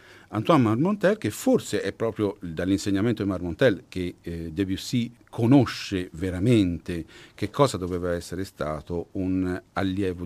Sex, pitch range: male, 90-135 Hz